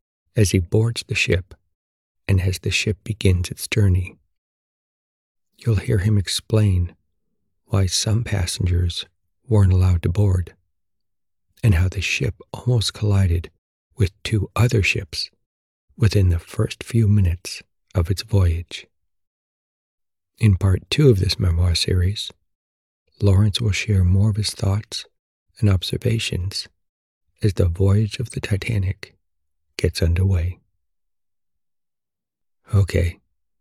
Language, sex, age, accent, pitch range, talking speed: English, male, 60-79, American, 85-105 Hz, 120 wpm